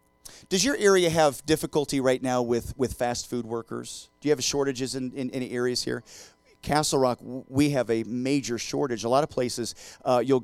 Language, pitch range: English, 110-130 Hz